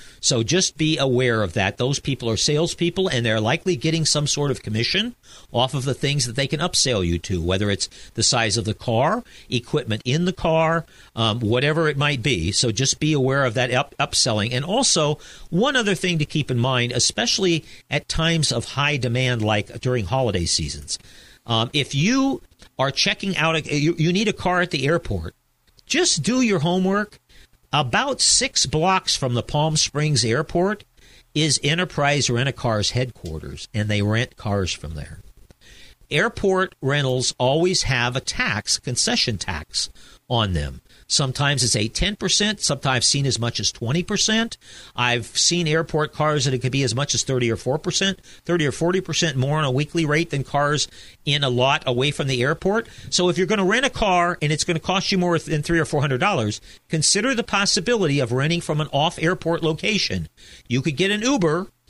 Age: 50-69